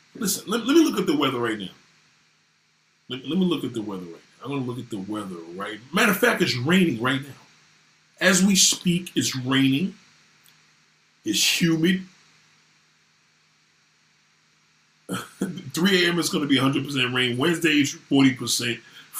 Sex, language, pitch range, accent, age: male, Japanese, 130-185 Hz, American, 40-59